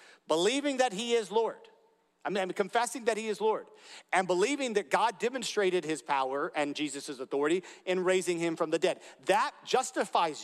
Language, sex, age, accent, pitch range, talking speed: English, male, 40-59, American, 160-255 Hz, 165 wpm